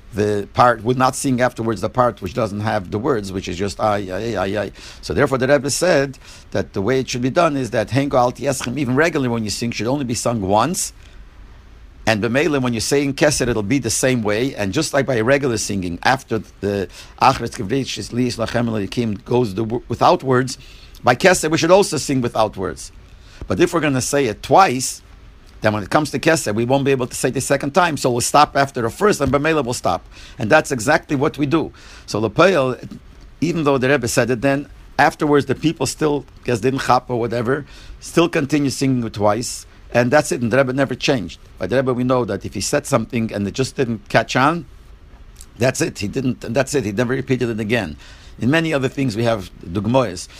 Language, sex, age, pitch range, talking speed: English, male, 50-69, 105-140 Hz, 215 wpm